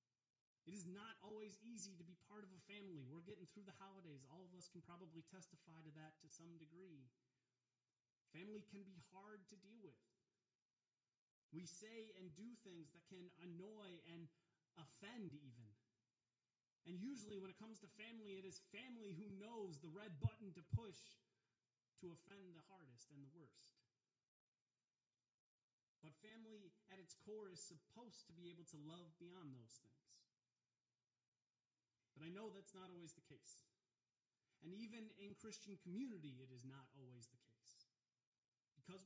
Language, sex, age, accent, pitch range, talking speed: English, male, 30-49, American, 130-195 Hz, 160 wpm